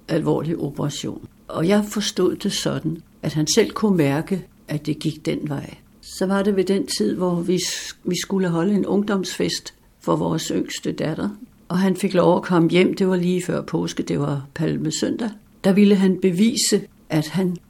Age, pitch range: 60-79, 155-190 Hz